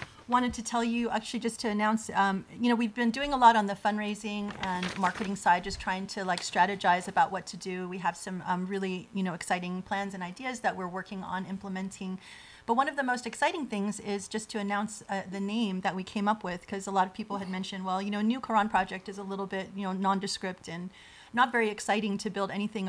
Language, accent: English, American